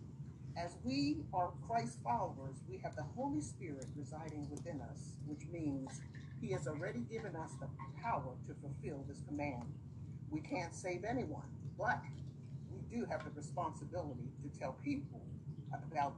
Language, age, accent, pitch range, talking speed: English, 40-59, American, 135-150 Hz, 150 wpm